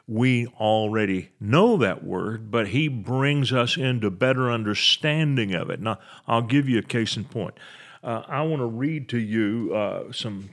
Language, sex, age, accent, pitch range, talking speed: English, male, 40-59, American, 105-135 Hz, 175 wpm